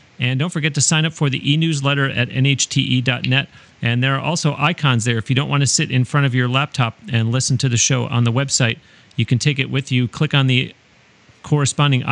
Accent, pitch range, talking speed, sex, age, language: American, 125-145 Hz, 230 wpm, male, 40-59, English